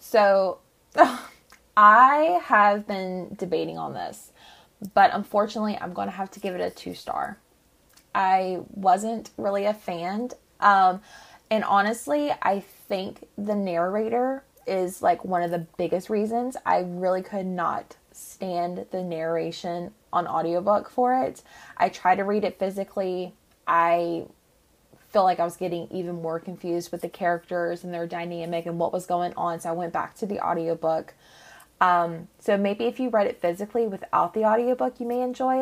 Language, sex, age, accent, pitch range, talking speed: English, female, 20-39, American, 175-210 Hz, 160 wpm